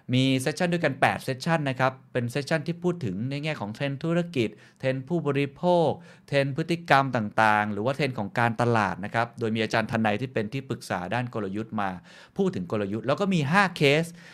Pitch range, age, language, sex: 110-140 Hz, 20-39, Thai, male